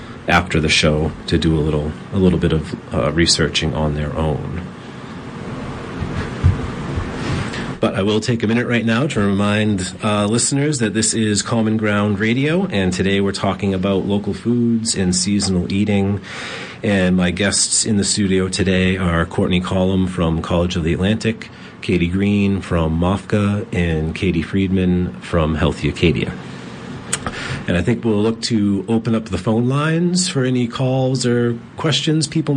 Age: 40-59